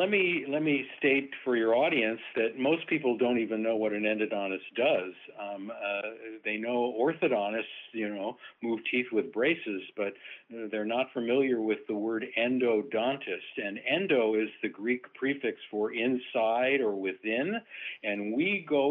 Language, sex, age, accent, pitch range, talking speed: English, male, 50-69, American, 110-145 Hz, 160 wpm